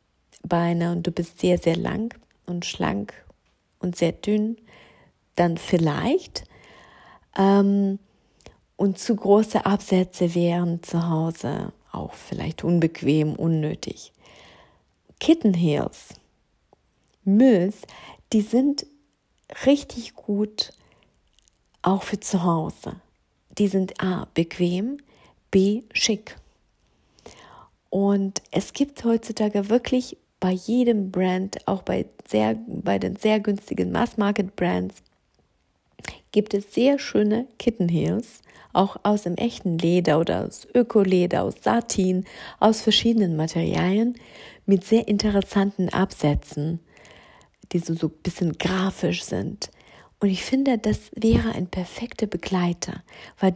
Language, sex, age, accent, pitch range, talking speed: German, female, 50-69, German, 175-220 Hz, 110 wpm